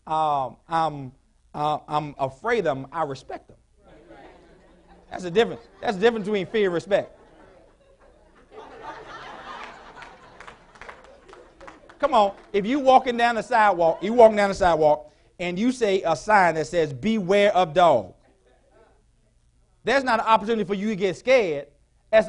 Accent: American